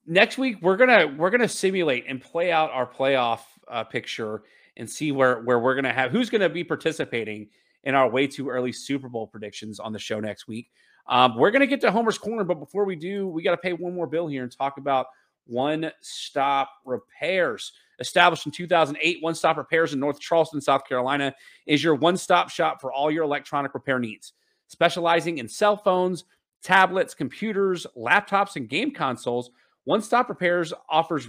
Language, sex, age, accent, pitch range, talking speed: English, male, 30-49, American, 135-190 Hz, 190 wpm